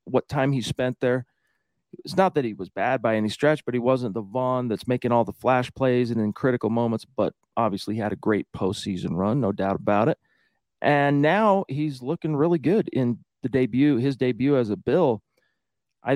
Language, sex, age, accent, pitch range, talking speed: English, male, 40-59, American, 115-145 Hz, 205 wpm